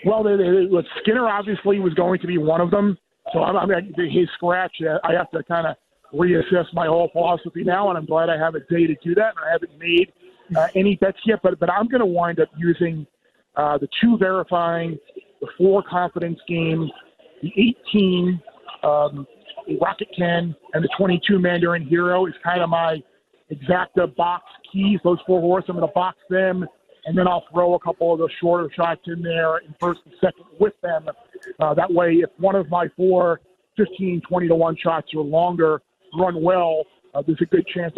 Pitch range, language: 165-185 Hz, English